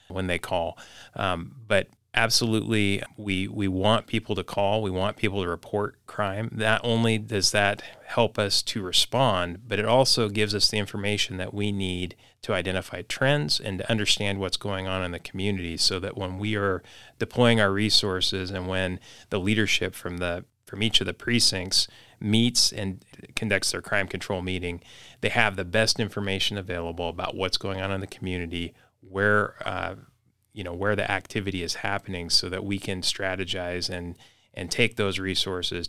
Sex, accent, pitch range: male, American, 90-105 Hz